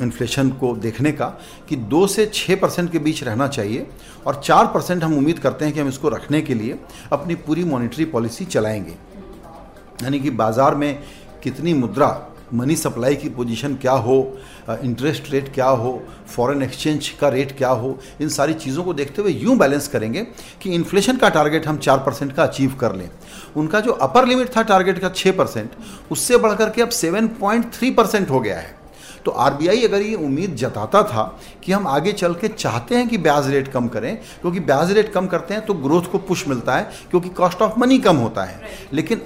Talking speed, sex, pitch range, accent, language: 195 wpm, male, 135-195 Hz, native, Hindi